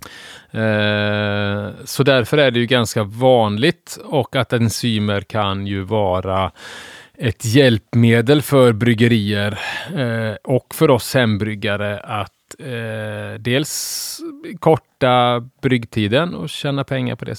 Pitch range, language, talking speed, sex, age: 100-120 Hz, Swedish, 105 wpm, male, 30-49